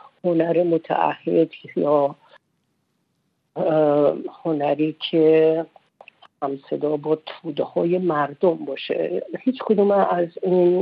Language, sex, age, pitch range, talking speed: Persian, female, 50-69, 150-175 Hz, 85 wpm